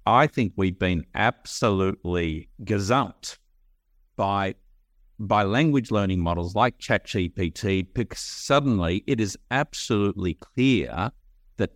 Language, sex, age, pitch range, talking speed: English, male, 50-69, 95-120 Hz, 100 wpm